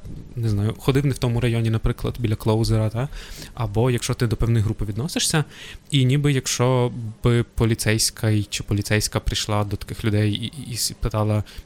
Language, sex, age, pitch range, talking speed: Ukrainian, male, 20-39, 110-135 Hz, 165 wpm